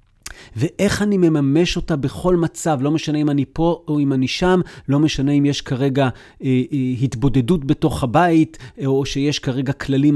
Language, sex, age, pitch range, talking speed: Hebrew, male, 40-59, 130-165 Hz, 170 wpm